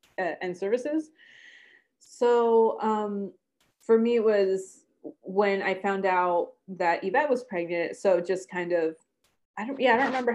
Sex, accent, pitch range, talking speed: female, American, 175-215 Hz, 150 wpm